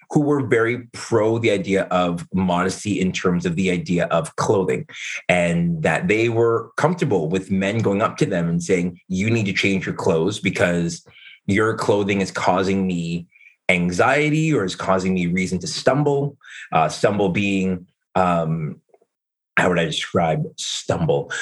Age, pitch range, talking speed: 30-49, 95-110 Hz, 160 wpm